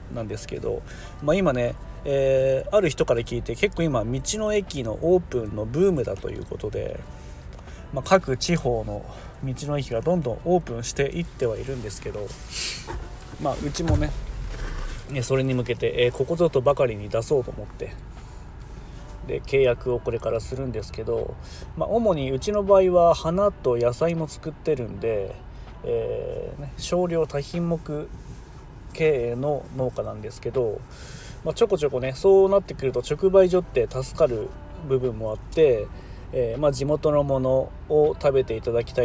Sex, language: male, Japanese